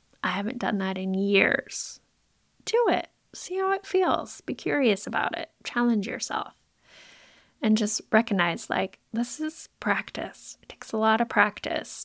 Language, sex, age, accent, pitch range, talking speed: English, female, 10-29, American, 205-260 Hz, 155 wpm